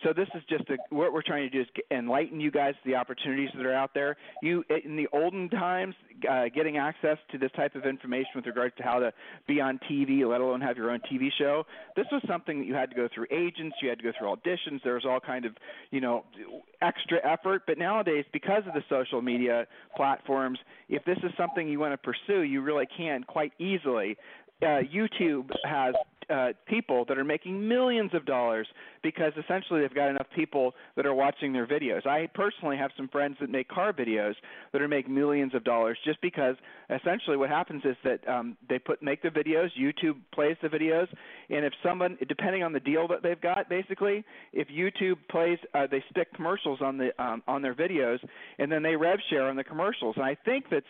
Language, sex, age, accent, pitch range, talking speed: English, male, 40-59, American, 135-170 Hz, 220 wpm